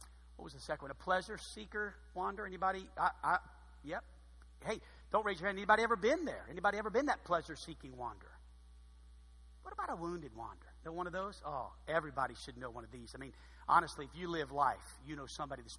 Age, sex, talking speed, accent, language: 50-69, male, 205 wpm, American, English